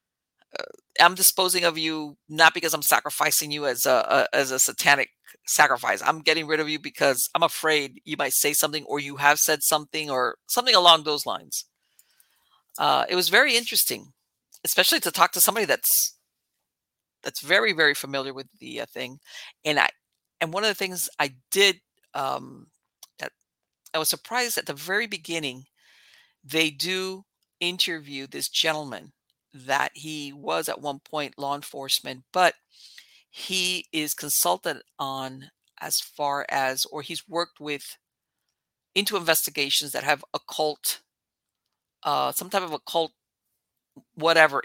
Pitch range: 145-185 Hz